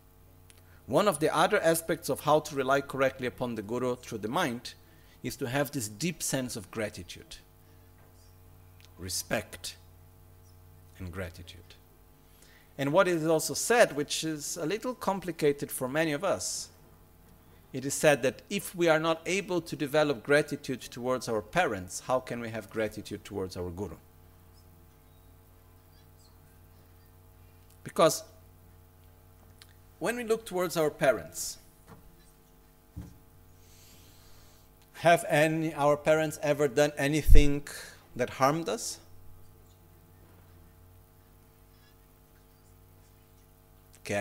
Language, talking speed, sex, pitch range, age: Italian, 110 wpm, male, 85-140 Hz, 50-69